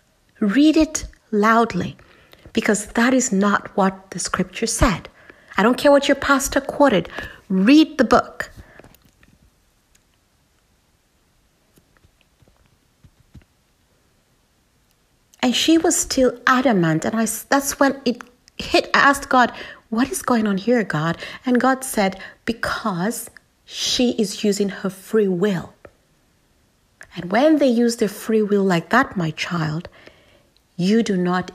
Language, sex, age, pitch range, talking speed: English, female, 60-79, 195-265 Hz, 120 wpm